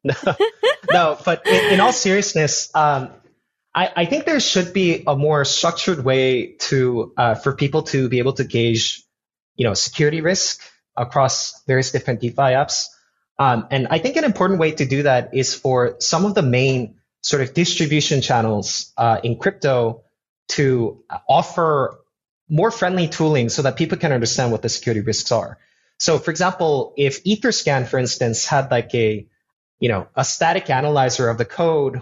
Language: English